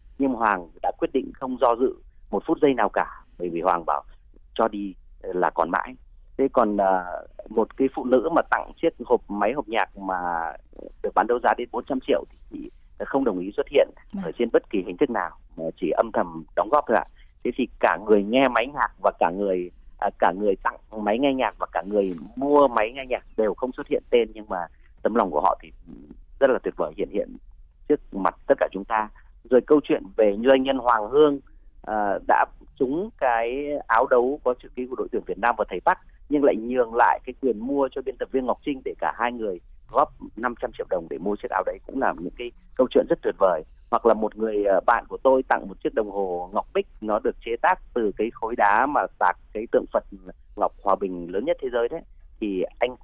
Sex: male